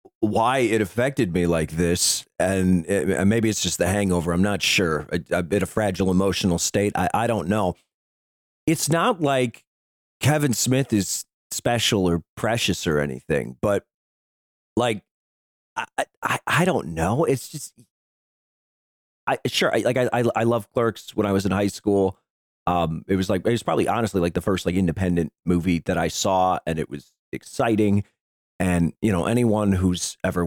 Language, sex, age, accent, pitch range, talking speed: English, male, 40-59, American, 85-120 Hz, 180 wpm